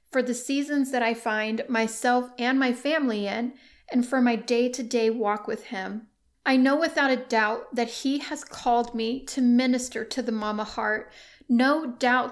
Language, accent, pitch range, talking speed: English, American, 230-270 Hz, 175 wpm